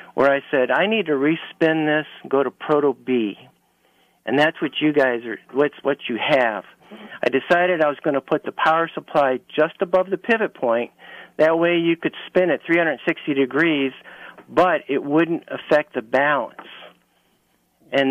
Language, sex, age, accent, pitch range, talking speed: English, male, 50-69, American, 130-160 Hz, 170 wpm